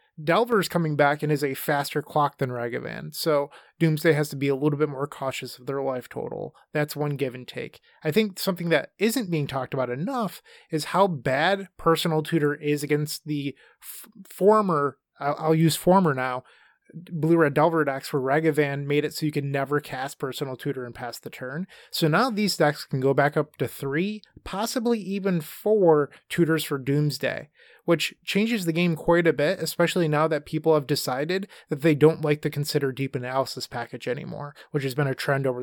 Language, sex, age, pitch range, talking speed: English, male, 30-49, 140-165 Hz, 195 wpm